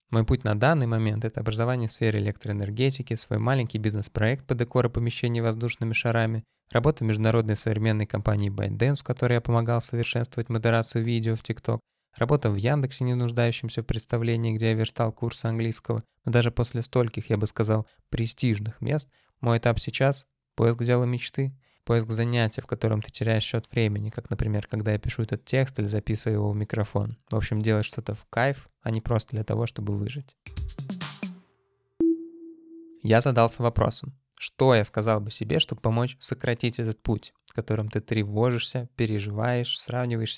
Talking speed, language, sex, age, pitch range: 170 wpm, Russian, male, 20-39, 110-125 Hz